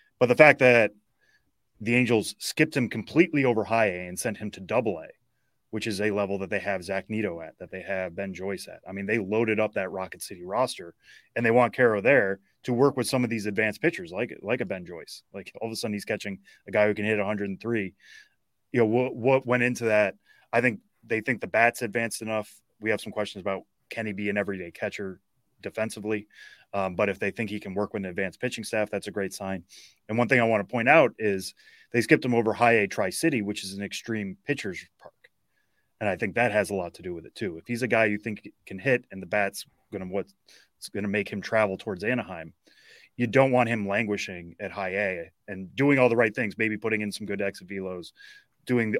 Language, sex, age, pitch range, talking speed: English, male, 20-39, 100-120 Hz, 240 wpm